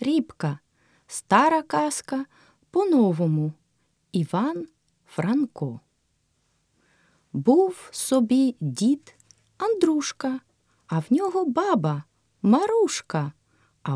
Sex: female